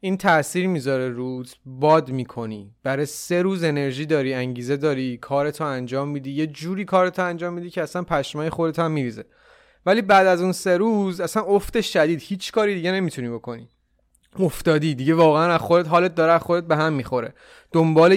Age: 30-49